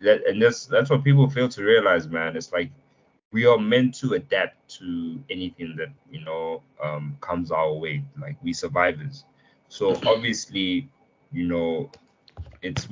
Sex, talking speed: male, 160 wpm